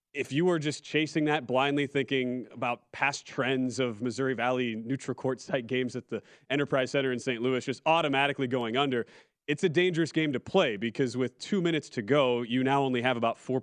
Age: 30-49